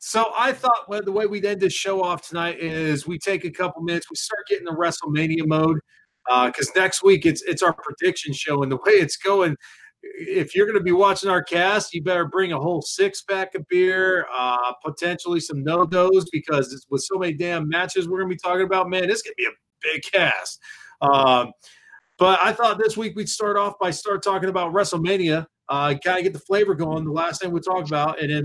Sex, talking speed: male, 225 wpm